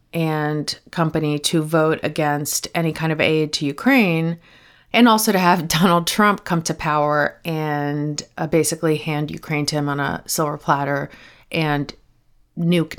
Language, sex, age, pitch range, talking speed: English, female, 30-49, 155-180 Hz, 150 wpm